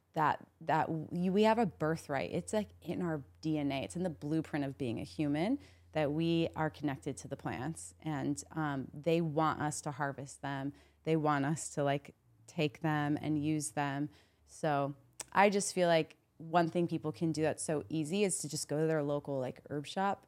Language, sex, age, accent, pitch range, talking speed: English, female, 20-39, American, 145-170 Hz, 200 wpm